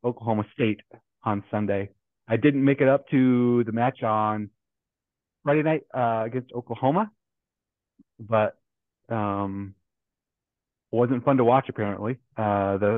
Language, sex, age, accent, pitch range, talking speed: English, male, 30-49, American, 105-125 Hz, 130 wpm